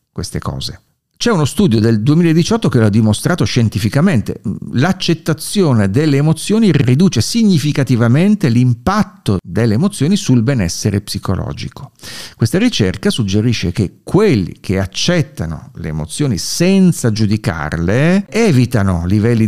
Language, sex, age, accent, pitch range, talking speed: Italian, male, 50-69, native, 100-155 Hz, 110 wpm